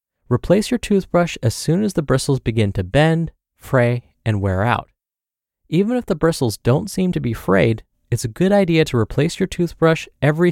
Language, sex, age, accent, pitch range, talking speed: English, male, 30-49, American, 115-165 Hz, 190 wpm